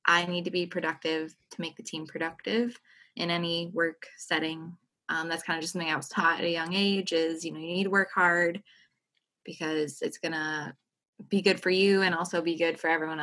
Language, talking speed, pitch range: English, 220 wpm, 165-185 Hz